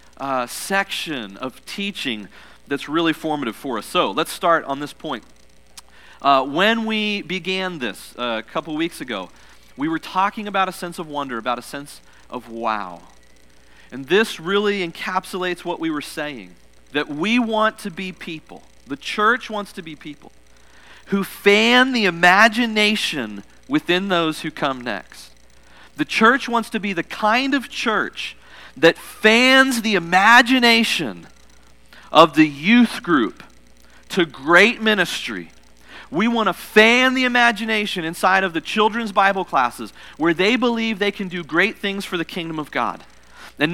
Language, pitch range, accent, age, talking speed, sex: English, 145-210 Hz, American, 40-59, 155 wpm, male